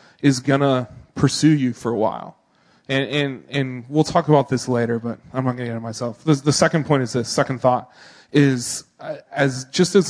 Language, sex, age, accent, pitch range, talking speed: English, male, 20-39, American, 125-145 Hz, 215 wpm